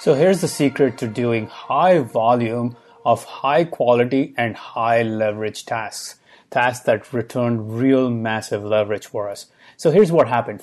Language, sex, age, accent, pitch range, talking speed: English, male, 30-49, Indian, 115-140 Hz, 150 wpm